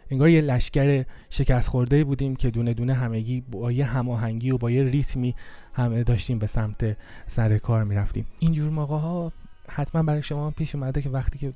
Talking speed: 180 wpm